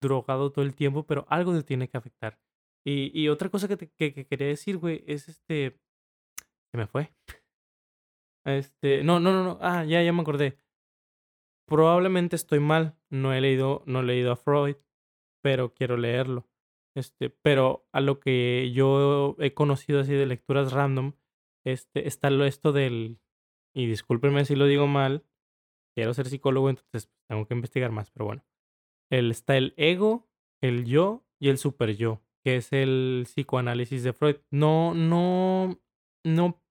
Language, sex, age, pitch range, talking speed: Spanish, male, 20-39, 130-150 Hz, 165 wpm